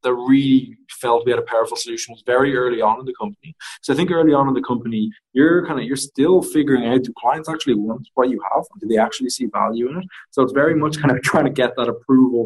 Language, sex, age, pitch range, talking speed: English, male, 20-39, 115-145 Hz, 270 wpm